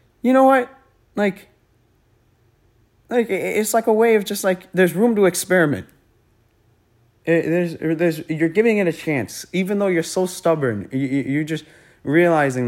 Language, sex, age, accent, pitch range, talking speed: English, male, 20-39, American, 115-160 Hz, 150 wpm